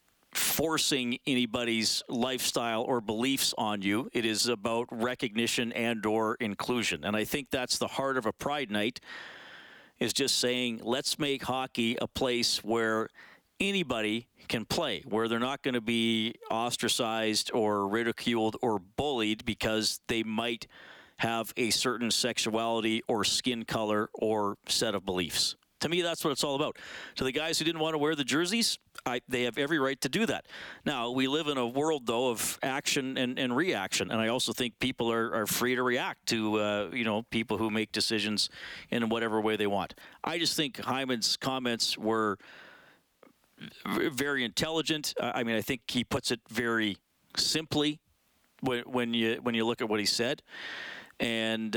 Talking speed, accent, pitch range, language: 170 wpm, American, 110-130 Hz, English